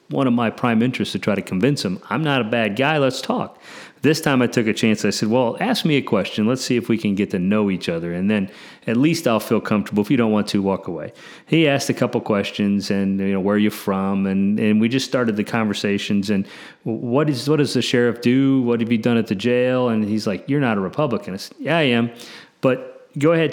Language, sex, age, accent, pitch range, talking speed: English, male, 40-59, American, 100-135 Hz, 265 wpm